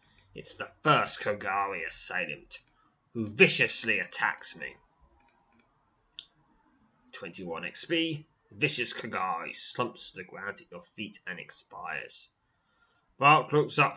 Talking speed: 110 wpm